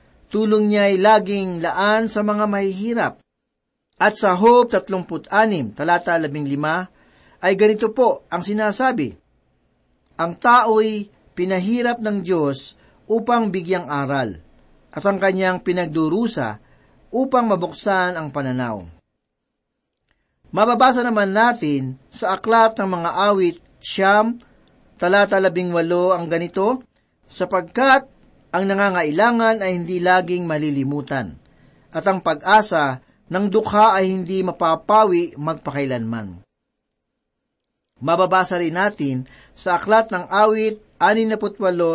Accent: native